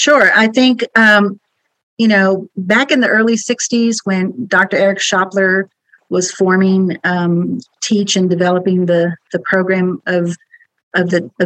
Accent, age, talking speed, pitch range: American, 40-59, 135 wpm, 175-200 Hz